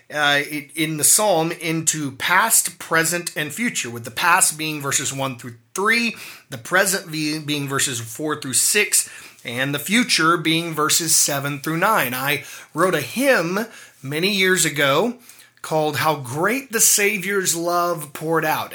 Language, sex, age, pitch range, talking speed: English, male, 30-49, 135-175 Hz, 150 wpm